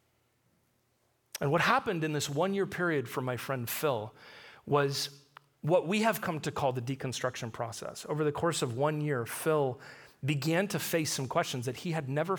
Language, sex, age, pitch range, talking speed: English, male, 40-59, 125-170 Hz, 185 wpm